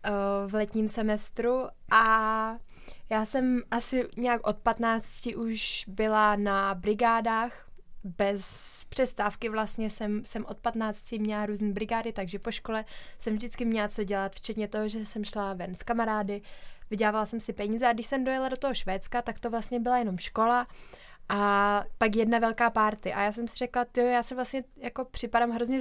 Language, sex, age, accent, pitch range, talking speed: Czech, female, 20-39, native, 210-240 Hz, 170 wpm